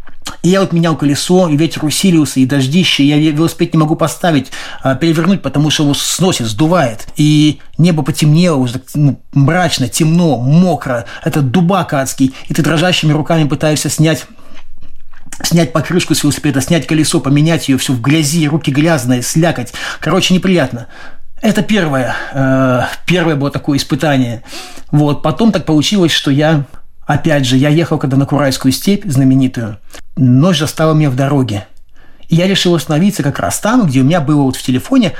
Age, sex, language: 30-49, male, Russian